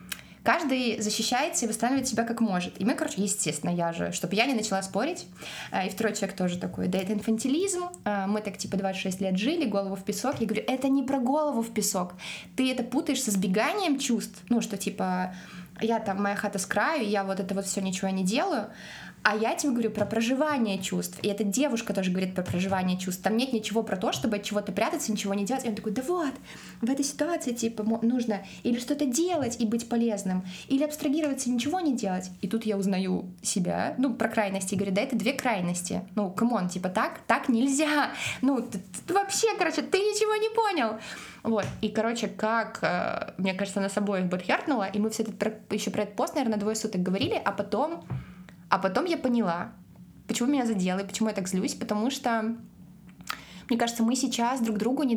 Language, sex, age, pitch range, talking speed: Russian, female, 20-39, 195-250 Hz, 200 wpm